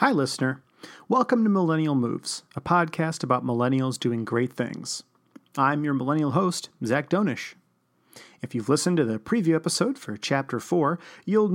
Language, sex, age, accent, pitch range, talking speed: English, male, 40-59, American, 125-175 Hz, 155 wpm